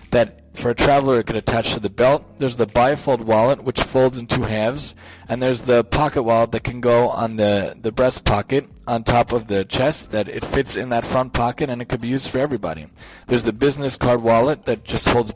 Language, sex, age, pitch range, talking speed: English, male, 20-39, 110-130 Hz, 230 wpm